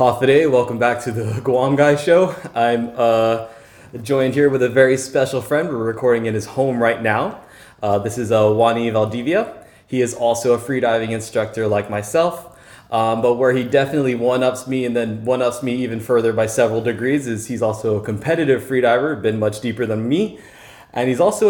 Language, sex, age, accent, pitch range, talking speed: English, male, 20-39, American, 110-135 Hz, 185 wpm